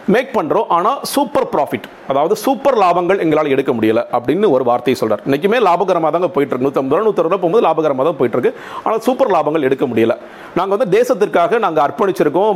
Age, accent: 40-59, native